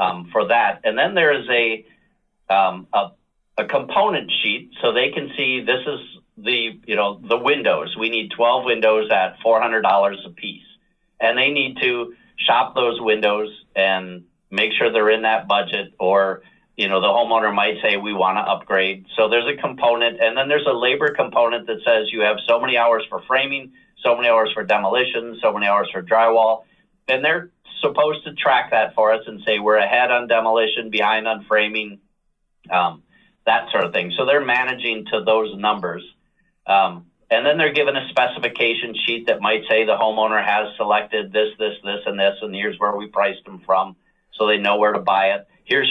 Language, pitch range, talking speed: English, 105-120 Hz, 195 wpm